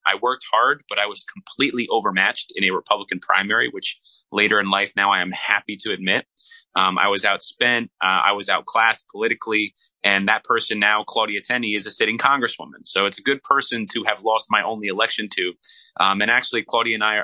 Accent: American